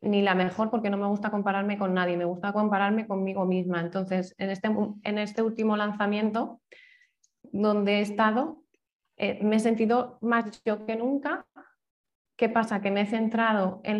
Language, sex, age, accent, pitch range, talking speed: Spanish, female, 20-39, Spanish, 200-230 Hz, 165 wpm